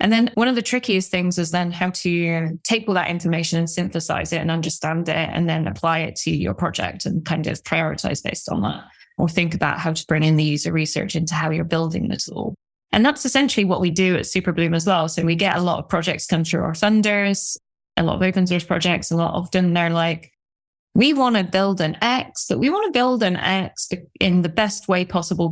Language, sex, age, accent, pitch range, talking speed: English, female, 10-29, British, 165-200 Hz, 235 wpm